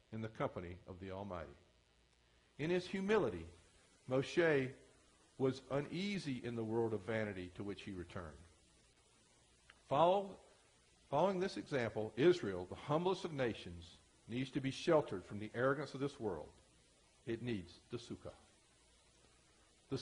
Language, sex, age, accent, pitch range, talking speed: English, male, 50-69, American, 100-155 Hz, 130 wpm